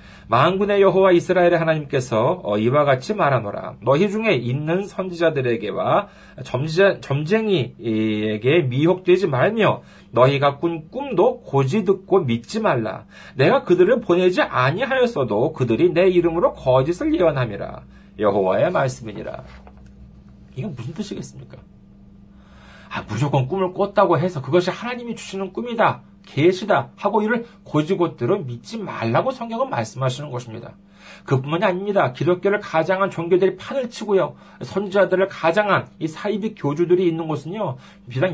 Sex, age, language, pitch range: male, 40-59, Korean, 130-195 Hz